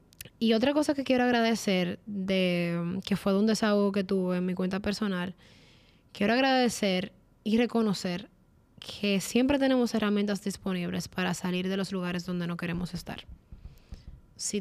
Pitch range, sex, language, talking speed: 185-205 Hz, female, Spanish, 150 wpm